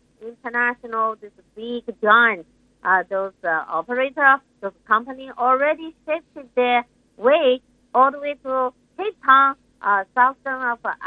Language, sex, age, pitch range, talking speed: English, female, 50-69, 200-265 Hz, 130 wpm